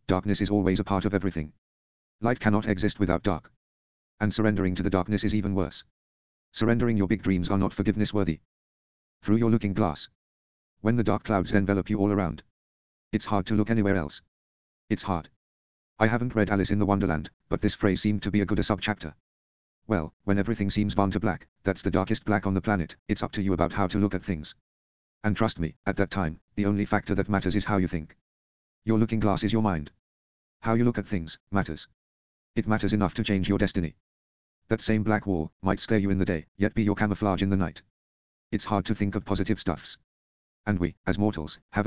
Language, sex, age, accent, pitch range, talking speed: English, male, 40-59, British, 75-105 Hz, 220 wpm